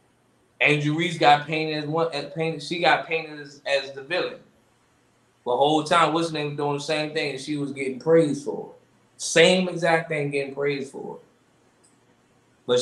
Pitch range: 135-165 Hz